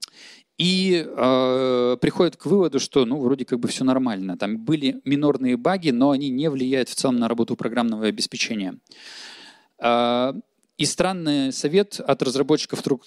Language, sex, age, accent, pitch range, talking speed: Russian, male, 20-39, native, 120-170 Hz, 145 wpm